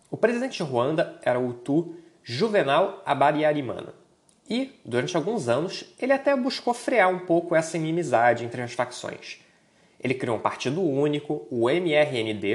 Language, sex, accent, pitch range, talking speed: Portuguese, male, Brazilian, 130-180 Hz, 150 wpm